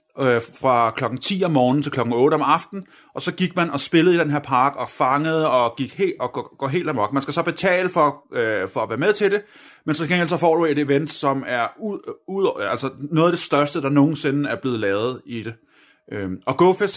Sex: male